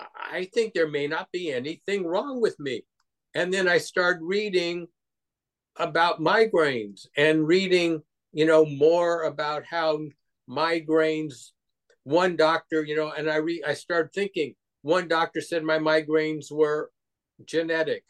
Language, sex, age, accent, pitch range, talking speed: English, male, 50-69, American, 140-165 Hz, 140 wpm